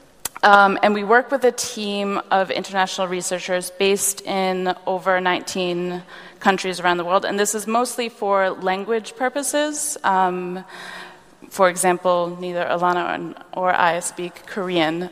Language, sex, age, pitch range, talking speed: English, female, 20-39, 175-200 Hz, 140 wpm